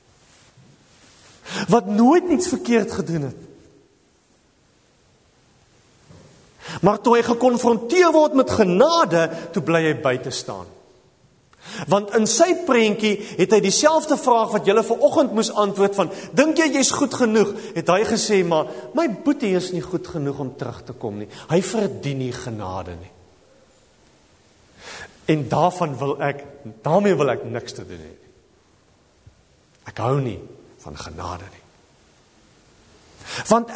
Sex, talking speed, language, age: male, 135 wpm, English, 40-59